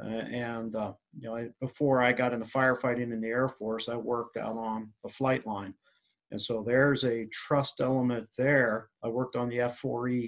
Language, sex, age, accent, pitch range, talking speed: English, male, 40-59, American, 115-135 Hz, 195 wpm